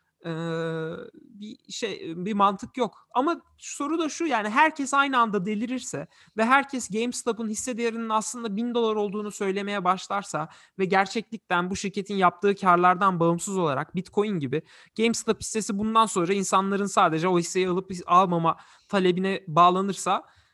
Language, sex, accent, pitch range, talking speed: Turkish, male, native, 180-235 Hz, 145 wpm